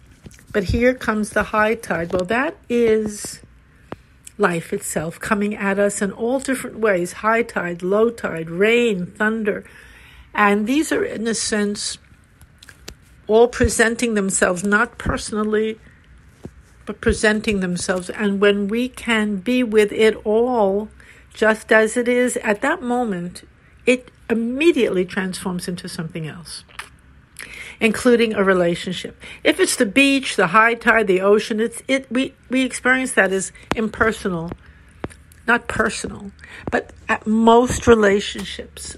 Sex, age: female, 60-79